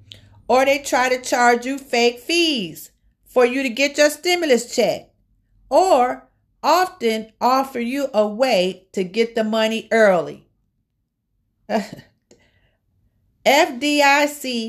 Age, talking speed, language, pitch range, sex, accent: 50-69, 110 wpm, English, 200-265 Hz, female, American